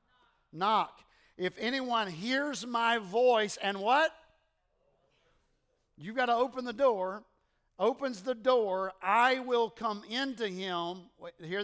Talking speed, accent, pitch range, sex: 125 wpm, American, 185-240 Hz, male